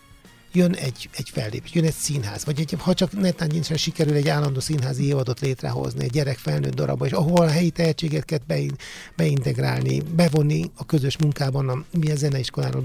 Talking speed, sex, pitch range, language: 175 wpm, male, 125-155 Hz, Hungarian